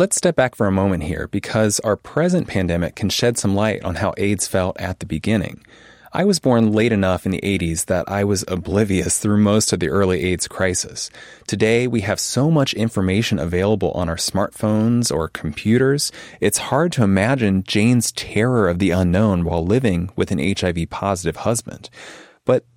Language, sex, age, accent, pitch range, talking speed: English, male, 30-49, American, 95-115 Hz, 185 wpm